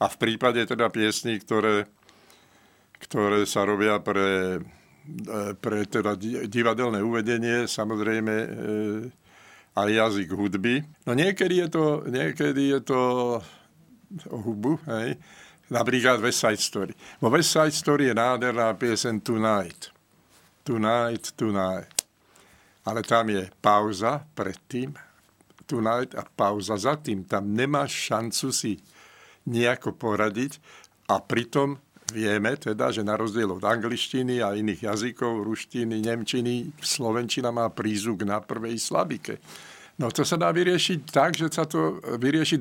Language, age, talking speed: Slovak, 60-79, 125 wpm